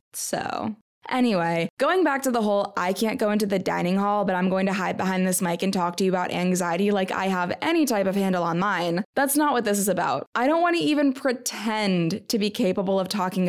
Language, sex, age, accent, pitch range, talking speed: English, female, 20-39, American, 190-275 Hz, 240 wpm